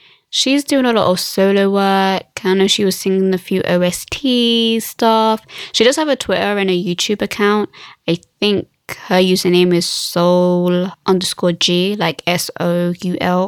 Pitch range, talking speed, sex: 180-215 Hz, 155 wpm, female